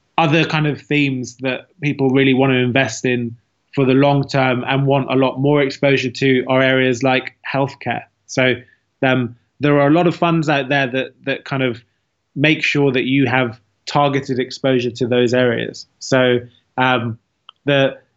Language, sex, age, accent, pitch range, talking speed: English, male, 20-39, British, 125-145 Hz, 175 wpm